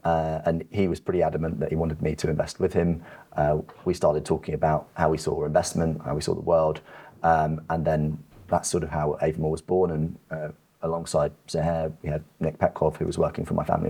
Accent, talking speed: British, 230 wpm